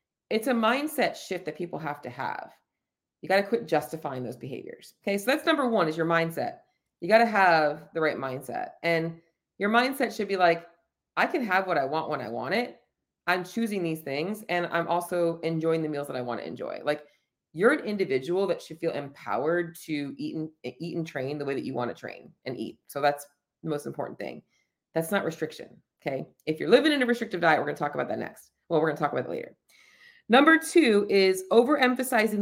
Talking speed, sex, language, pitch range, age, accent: 225 wpm, female, English, 165-220 Hz, 30-49, American